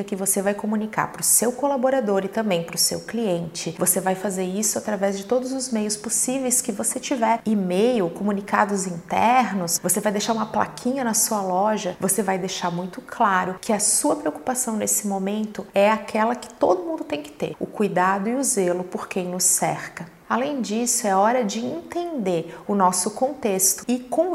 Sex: female